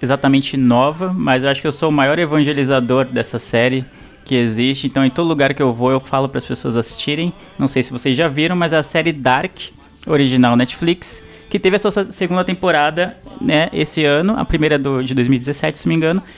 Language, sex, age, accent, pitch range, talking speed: Portuguese, male, 20-39, Brazilian, 135-165 Hz, 215 wpm